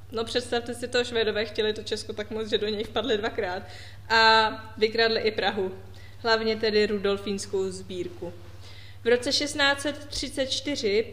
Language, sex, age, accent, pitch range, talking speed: Czech, female, 20-39, native, 185-245 Hz, 140 wpm